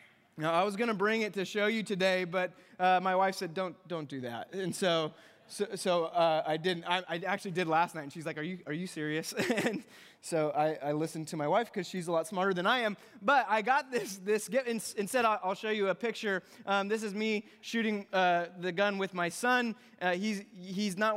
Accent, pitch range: American, 180-230 Hz